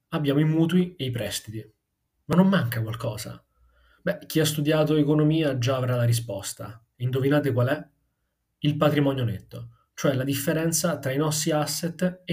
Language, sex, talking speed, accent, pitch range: Italian, male, 160 wpm, native, 115-140 Hz